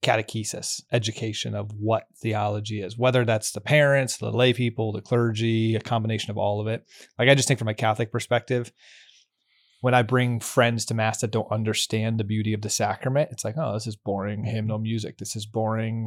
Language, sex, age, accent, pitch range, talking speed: English, male, 30-49, American, 105-120 Hz, 200 wpm